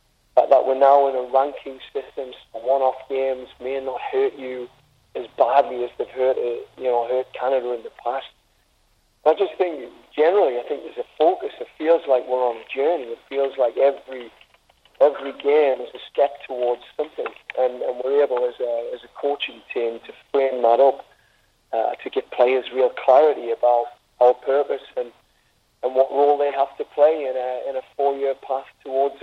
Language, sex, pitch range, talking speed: English, male, 125-150 Hz, 195 wpm